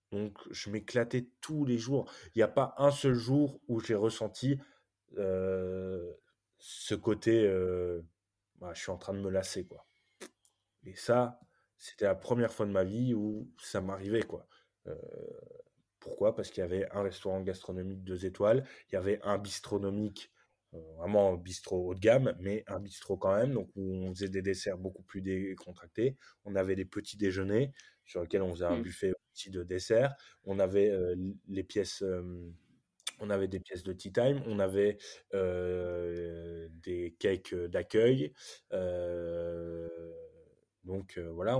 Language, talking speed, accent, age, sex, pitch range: French, 160 wpm, French, 20-39, male, 90-110 Hz